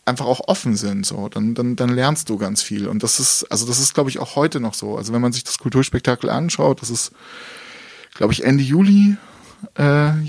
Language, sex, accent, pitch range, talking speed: German, male, German, 120-145 Hz, 220 wpm